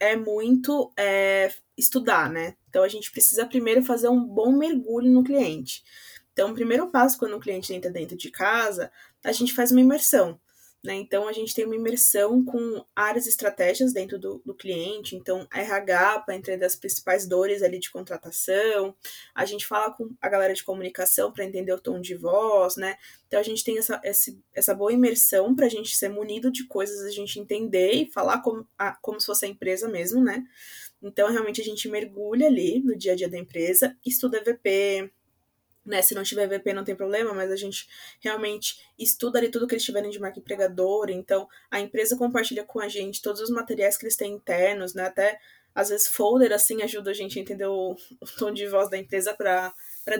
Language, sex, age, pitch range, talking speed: Portuguese, female, 20-39, 190-235 Hz, 200 wpm